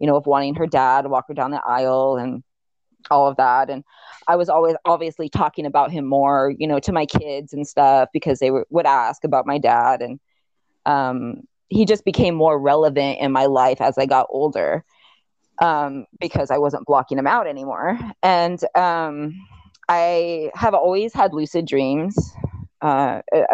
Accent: American